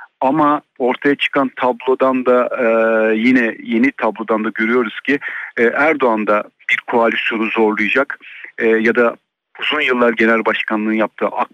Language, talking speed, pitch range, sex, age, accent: Turkish, 125 wpm, 110-125 Hz, male, 50-69, native